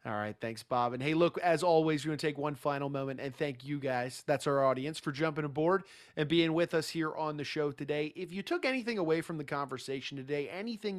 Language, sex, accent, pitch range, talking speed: English, male, American, 140-175 Hz, 240 wpm